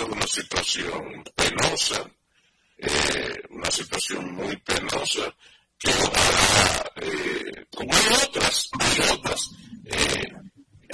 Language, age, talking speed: Spanish, 60-79, 95 wpm